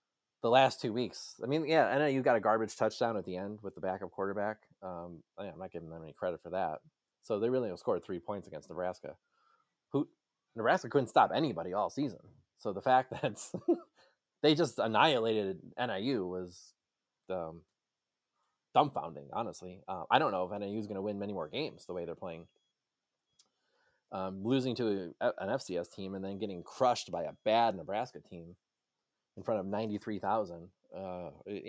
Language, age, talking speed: English, 20-39, 180 wpm